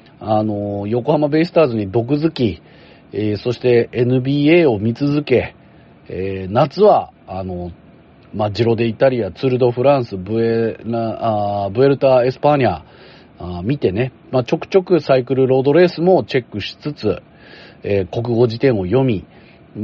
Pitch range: 105-175 Hz